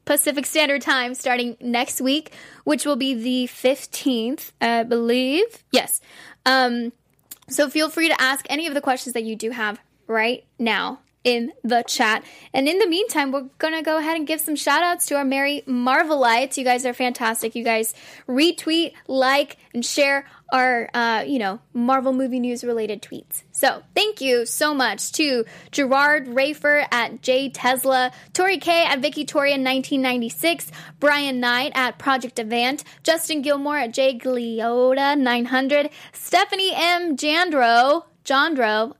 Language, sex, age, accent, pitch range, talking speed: English, female, 10-29, American, 245-295 Hz, 155 wpm